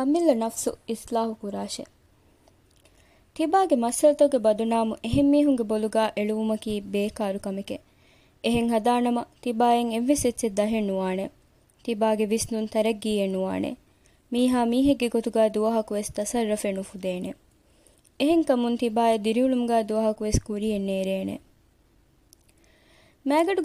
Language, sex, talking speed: Malayalam, female, 70 wpm